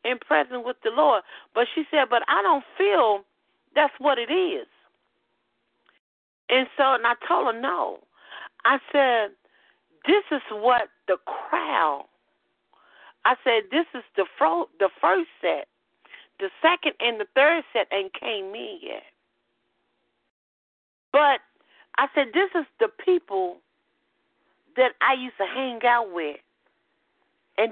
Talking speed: 135 wpm